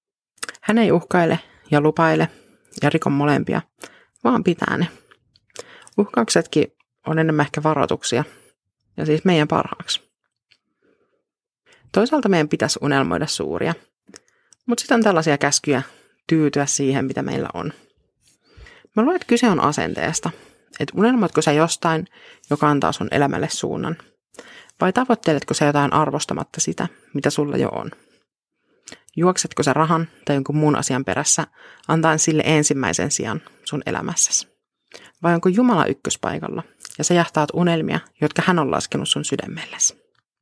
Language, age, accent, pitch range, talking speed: Finnish, 30-49, native, 150-210 Hz, 130 wpm